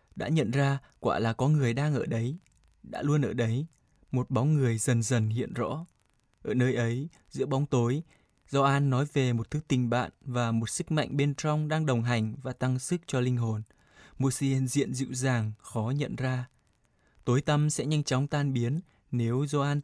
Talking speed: 205 wpm